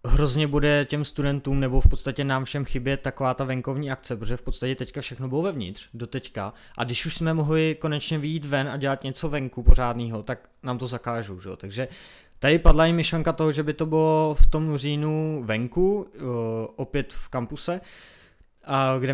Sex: male